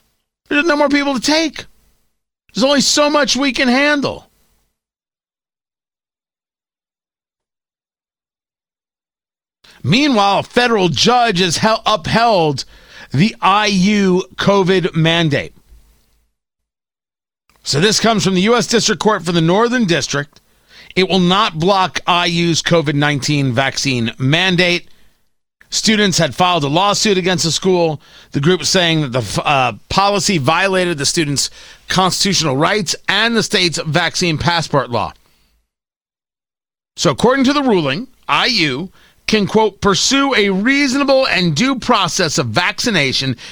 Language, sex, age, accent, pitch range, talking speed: English, male, 40-59, American, 160-215 Hz, 120 wpm